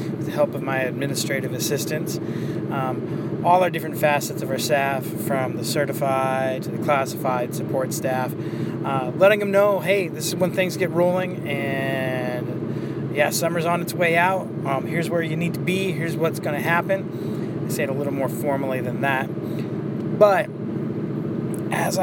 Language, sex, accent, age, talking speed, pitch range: English, male, American, 30-49, 175 wpm, 150-175 Hz